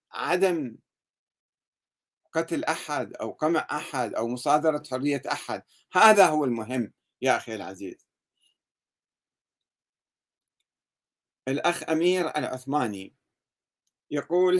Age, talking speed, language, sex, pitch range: 50-69, 80 wpm, Arabic, male, 130-180 Hz